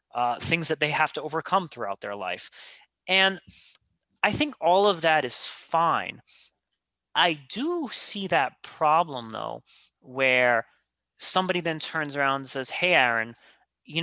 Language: English